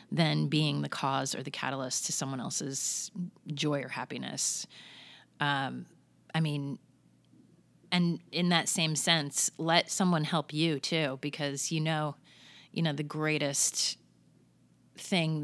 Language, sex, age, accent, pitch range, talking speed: English, female, 30-49, American, 140-160 Hz, 130 wpm